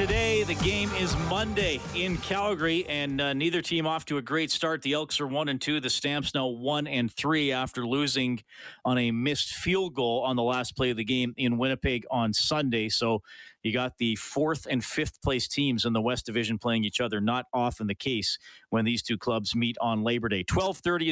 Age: 40-59